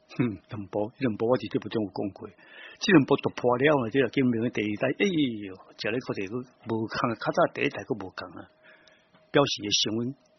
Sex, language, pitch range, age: male, Chinese, 115-160 Hz, 60-79